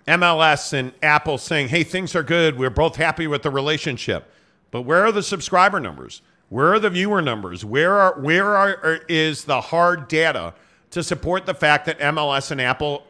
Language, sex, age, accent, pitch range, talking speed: English, male, 50-69, American, 155-190 Hz, 190 wpm